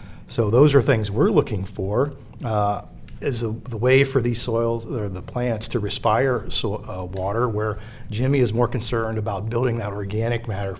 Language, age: English, 40-59